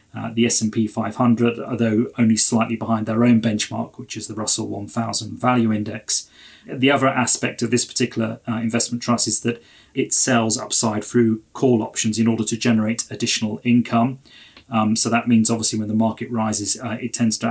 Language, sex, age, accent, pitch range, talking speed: English, male, 30-49, British, 110-120 Hz, 185 wpm